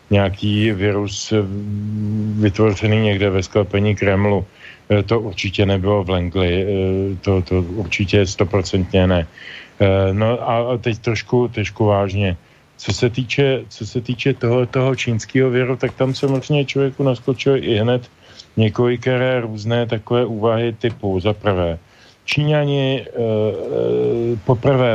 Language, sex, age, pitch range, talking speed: Slovak, male, 40-59, 95-120 Hz, 120 wpm